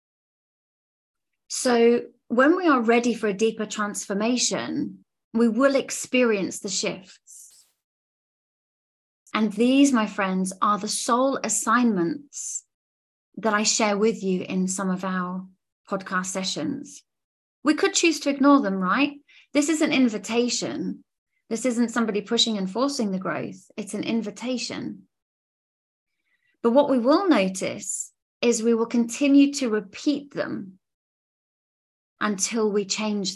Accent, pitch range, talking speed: British, 200-275 Hz, 125 wpm